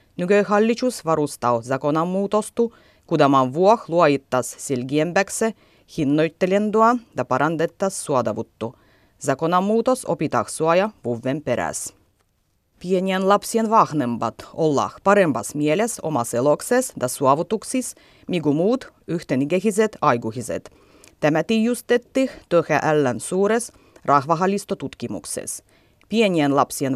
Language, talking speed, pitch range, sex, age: Finnish, 80 wpm, 135-205 Hz, female, 30-49